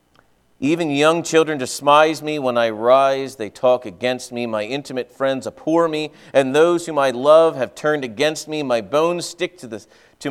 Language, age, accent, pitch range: English, 40-59, American, 125-165 Hz